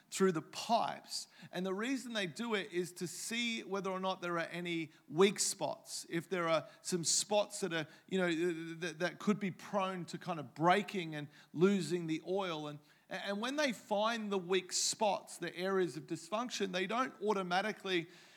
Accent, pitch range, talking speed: Australian, 175-210 Hz, 190 wpm